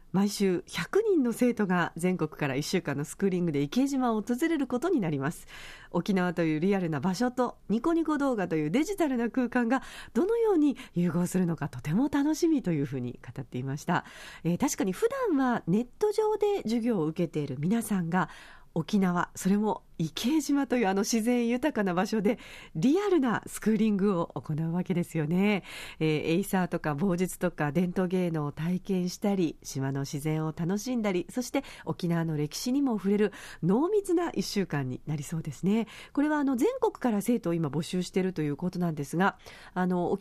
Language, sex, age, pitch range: Japanese, female, 50-69, 165-250 Hz